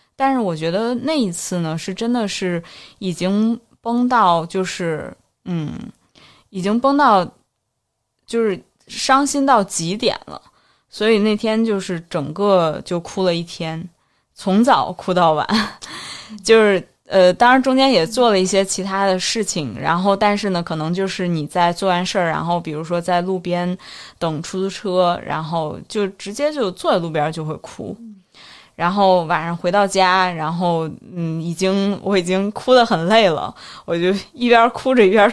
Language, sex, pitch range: Chinese, female, 170-220 Hz